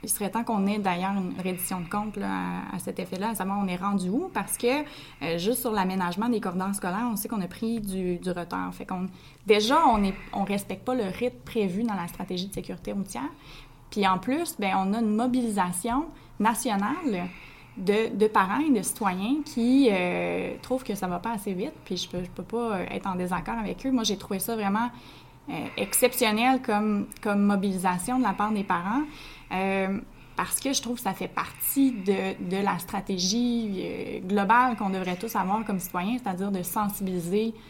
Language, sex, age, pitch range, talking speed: French, female, 20-39, 185-230 Hz, 195 wpm